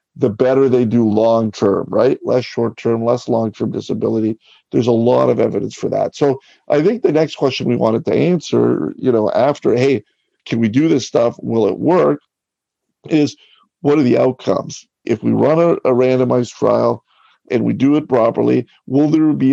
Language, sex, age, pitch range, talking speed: English, male, 50-69, 115-135 Hz, 185 wpm